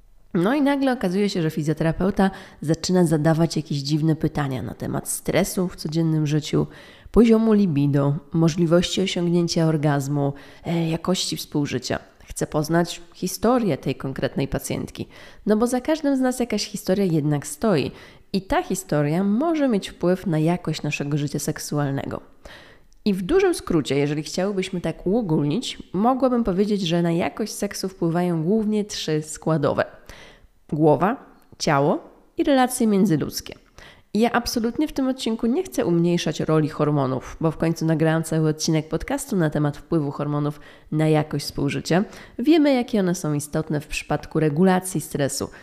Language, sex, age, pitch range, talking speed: Polish, female, 20-39, 155-205 Hz, 145 wpm